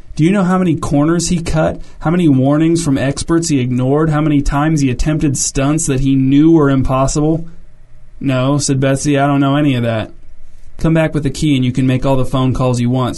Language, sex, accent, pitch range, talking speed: English, male, American, 130-145 Hz, 230 wpm